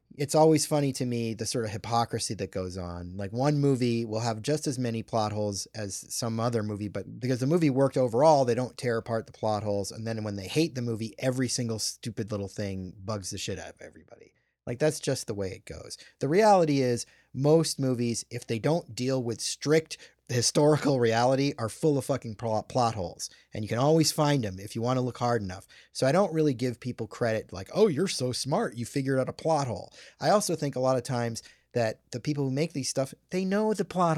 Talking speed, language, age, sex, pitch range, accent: 230 wpm, English, 30-49, male, 110-145 Hz, American